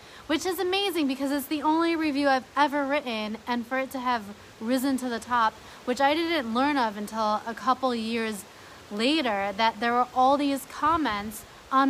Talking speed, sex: 185 wpm, female